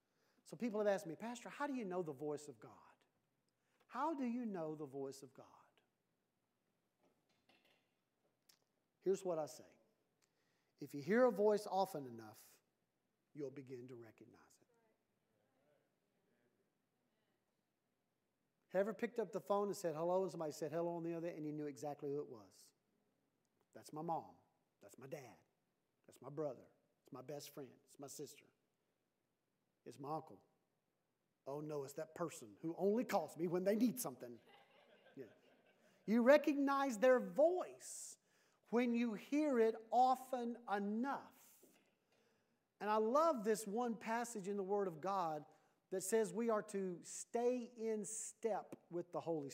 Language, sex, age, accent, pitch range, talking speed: English, male, 50-69, American, 155-225 Hz, 155 wpm